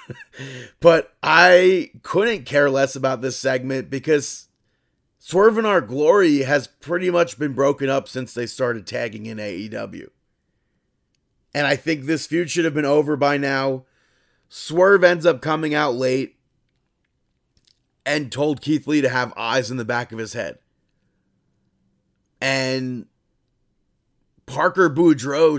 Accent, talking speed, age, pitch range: American, 135 wpm, 30-49, 125-150 Hz